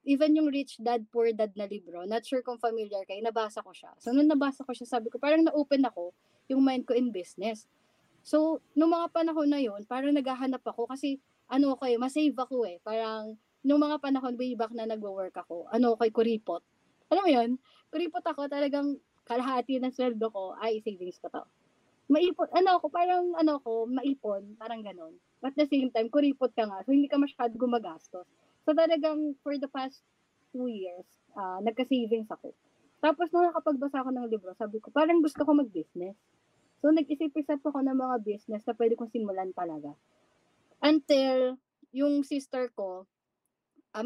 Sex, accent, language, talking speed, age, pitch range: female, native, Filipino, 180 wpm, 20-39, 220-290 Hz